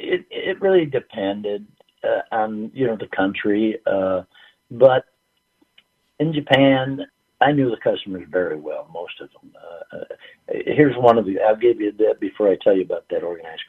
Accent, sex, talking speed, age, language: American, male, 170 wpm, 60-79, English